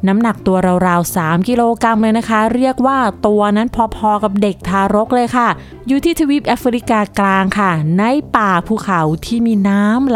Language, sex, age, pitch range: Thai, female, 20-39, 195-255 Hz